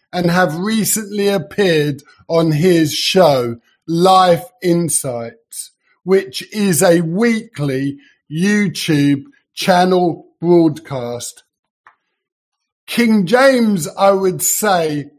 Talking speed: 85 wpm